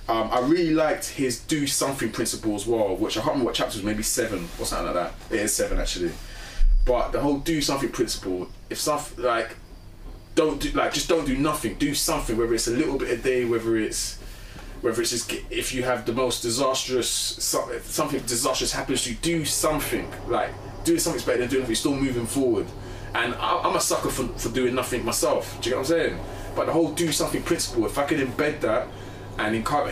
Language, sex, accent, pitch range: English, male, British, 110-135 Hz